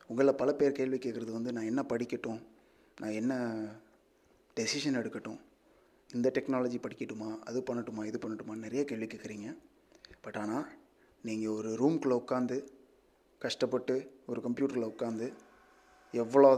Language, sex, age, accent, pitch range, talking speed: Tamil, male, 30-49, native, 115-140 Hz, 125 wpm